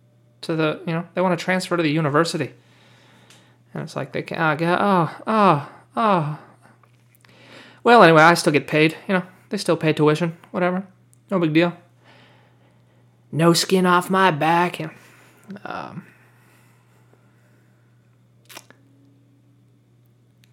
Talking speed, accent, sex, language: 130 wpm, American, male, English